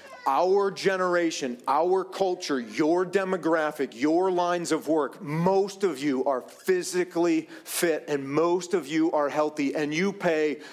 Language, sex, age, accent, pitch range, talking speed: English, male, 40-59, American, 140-200 Hz, 140 wpm